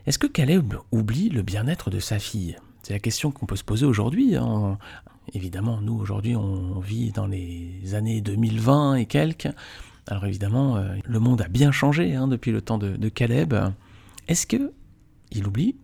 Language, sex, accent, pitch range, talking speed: French, male, French, 100-140 Hz, 170 wpm